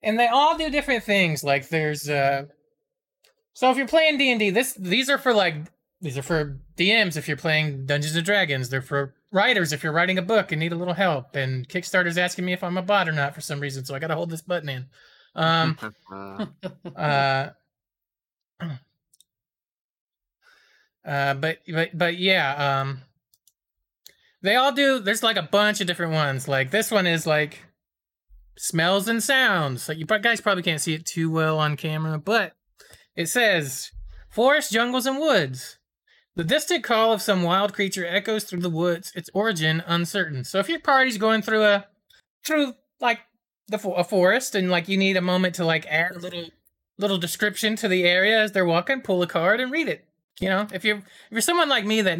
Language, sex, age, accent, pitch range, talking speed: English, male, 20-39, American, 155-215 Hz, 195 wpm